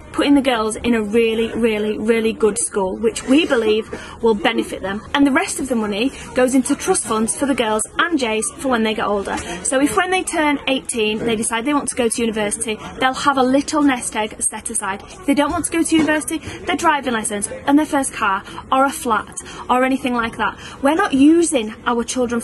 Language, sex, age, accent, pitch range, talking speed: English, female, 30-49, British, 230-295 Hz, 225 wpm